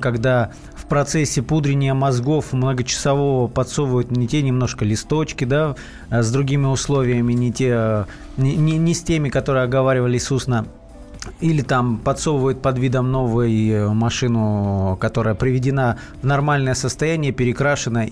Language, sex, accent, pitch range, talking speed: Russian, male, native, 125-150 Hz, 125 wpm